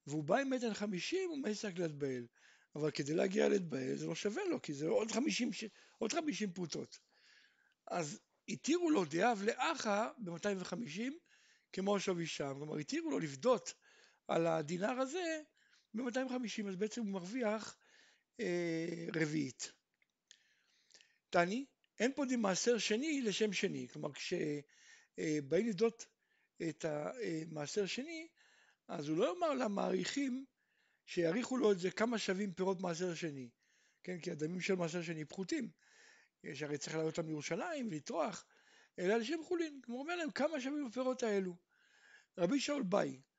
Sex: male